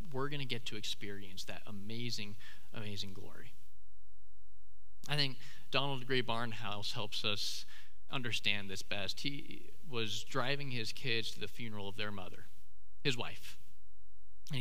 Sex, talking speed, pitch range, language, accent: male, 140 wpm, 95-135 Hz, English, American